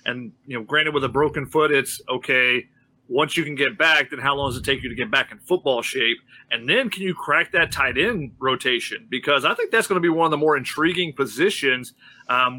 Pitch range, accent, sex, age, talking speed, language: 135-165 Hz, American, male, 30-49, 245 wpm, English